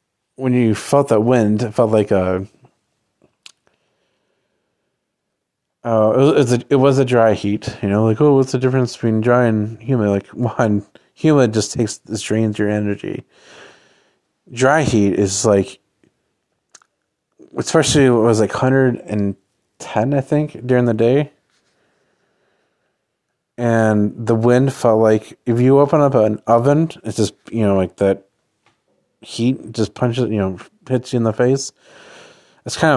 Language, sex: English, male